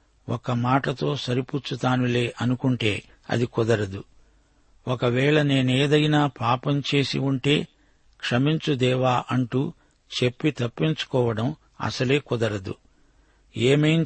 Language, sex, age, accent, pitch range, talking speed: Telugu, male, 60-79, native, 125-145 Hz, 75 wpm